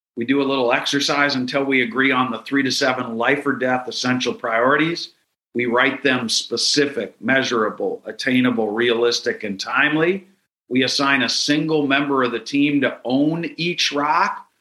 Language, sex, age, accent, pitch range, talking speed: English, male, 50-69, American, 120-145 Hz, 160 wpm